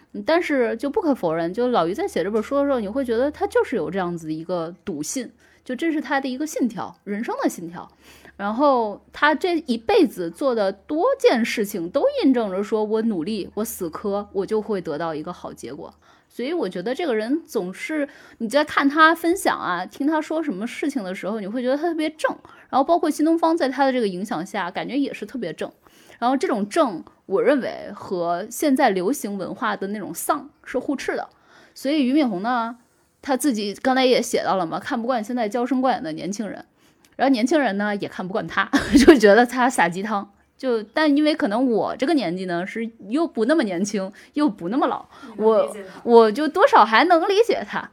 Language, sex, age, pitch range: Chinese, female, 10-29, 205-300 Hz